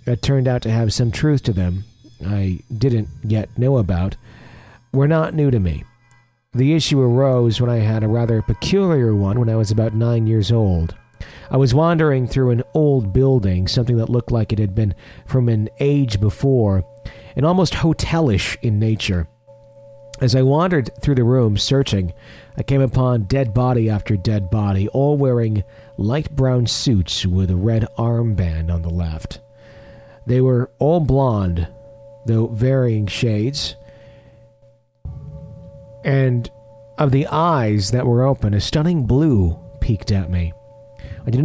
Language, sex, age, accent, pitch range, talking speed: English, male, 40-59, American, 110-135 Hz, 155 wpm